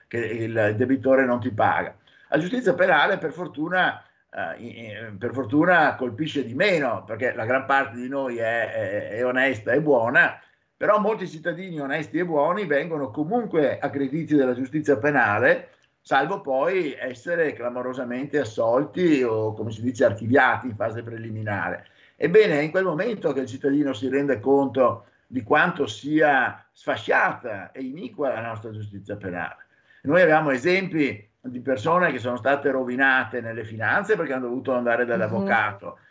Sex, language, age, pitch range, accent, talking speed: male, Italian, 50-69, 120-150 Hz, native, 155 wpm